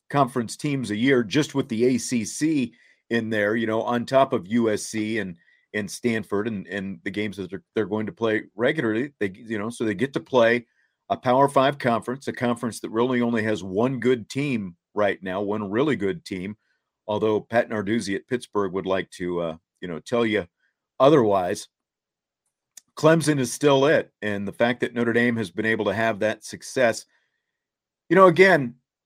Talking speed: 190 wpm